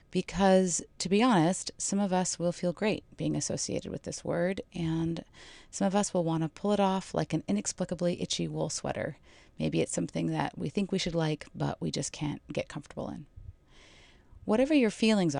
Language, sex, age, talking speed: English, female, 30-49, 190 wpm